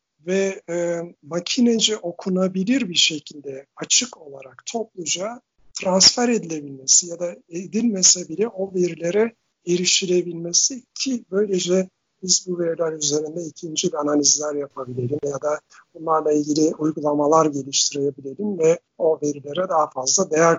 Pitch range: 155-190 Hz